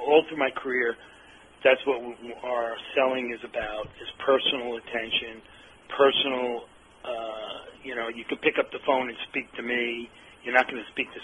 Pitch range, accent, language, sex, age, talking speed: 120-140 Hz, American, English, male, 40-59, 175 wpm